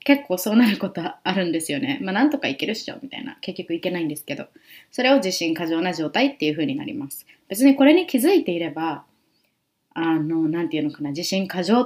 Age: 20-39